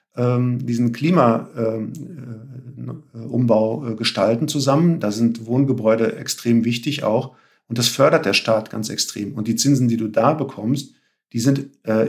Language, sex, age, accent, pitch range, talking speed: German, male, 50-69, German, 110-135 Hz, 145 wpm